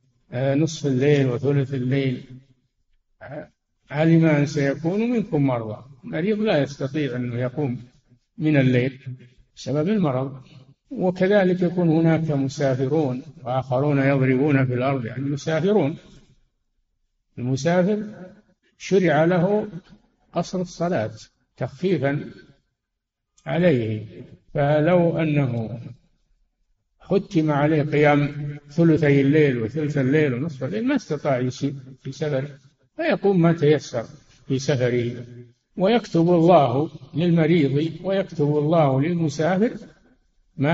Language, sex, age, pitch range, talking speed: Arabic, male, 60-79, 130-165 Hz, 90 wpm